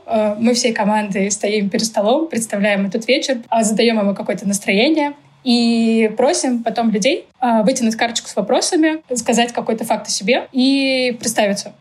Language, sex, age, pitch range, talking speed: Russian, female, 20-39, 210-240 Hz, 140 wpm